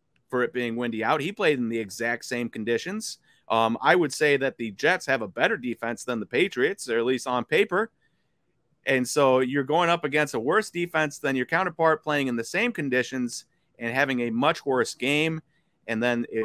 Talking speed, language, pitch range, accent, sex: 205 wpm, English, 120-160 Hz, American, male